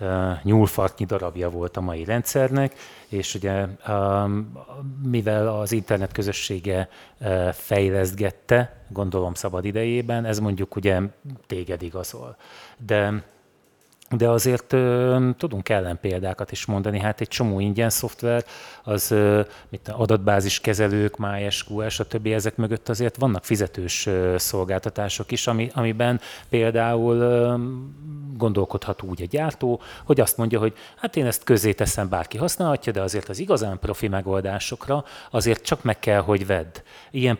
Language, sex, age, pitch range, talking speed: Hungarian, male, 30-49, 95-120 Hz, 125 wpm